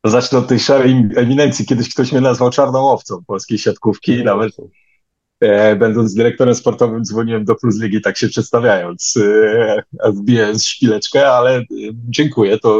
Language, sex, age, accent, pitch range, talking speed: Polish, male, 30-49, native, 95-120 Hz, 150 wpm